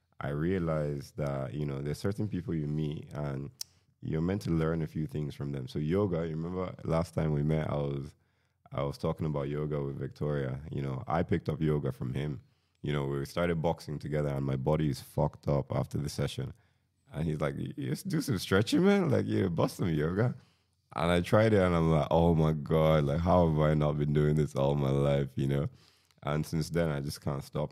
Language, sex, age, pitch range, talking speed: Finnish, male, 20-39, 70-85 Hz, 225 wpm